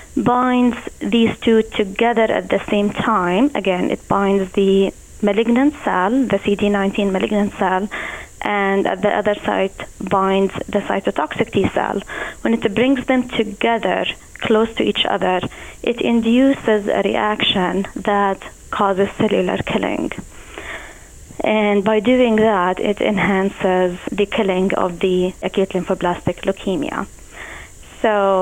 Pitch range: 195-220 Hz